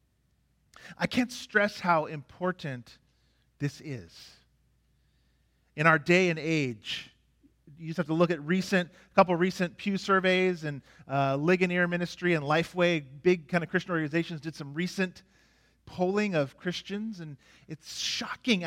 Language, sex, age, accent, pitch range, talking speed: English, male, 40-59, American, 140-200 Hz, 145 wpm